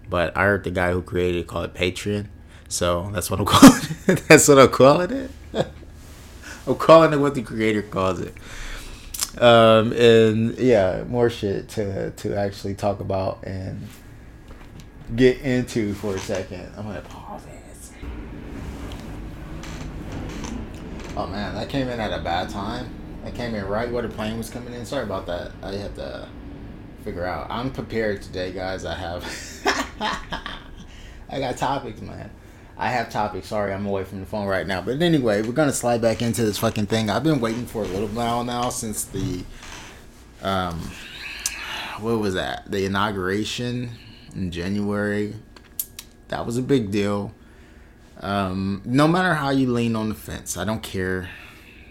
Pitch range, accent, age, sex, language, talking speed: 90-115 Hz, American, 20-39, male, English, 165 wpm